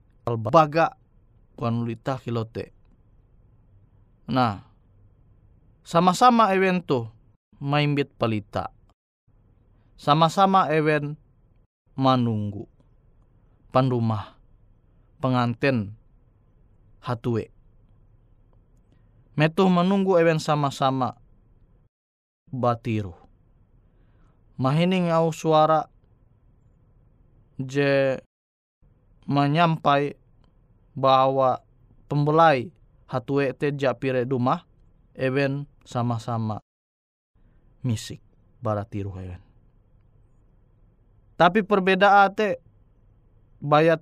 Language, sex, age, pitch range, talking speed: Indonesian, male, 20-39, 110-140 Hz, 55 wpm